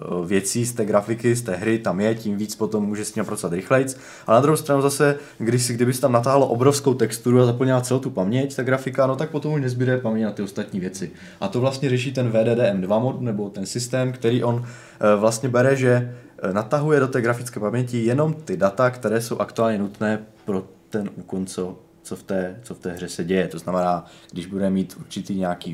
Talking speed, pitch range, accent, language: 215 wpm, 95-125 Hz, native, Czech